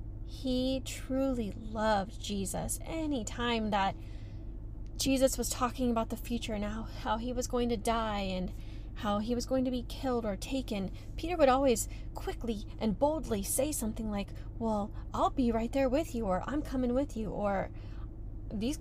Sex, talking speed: female, 170 wpm